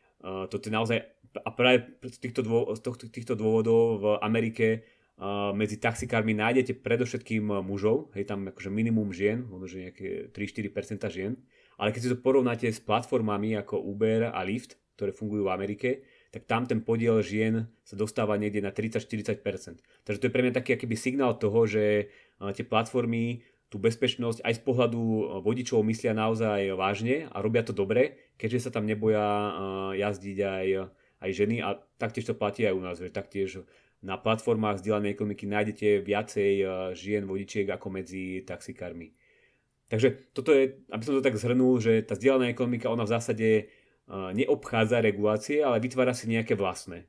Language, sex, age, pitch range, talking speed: Czech, male, 30-49, 105-120 Hz, 155 wpm